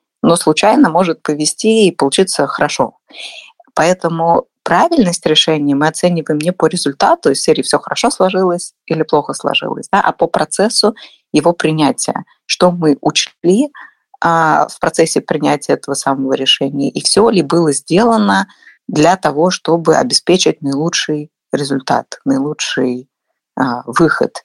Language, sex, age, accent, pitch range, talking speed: Russian, female, 30-49, native, 140-190 Hz, 130 wpm